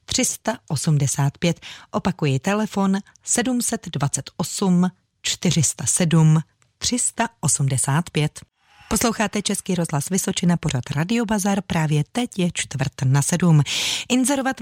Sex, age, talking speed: female, 30-49, 80 wpm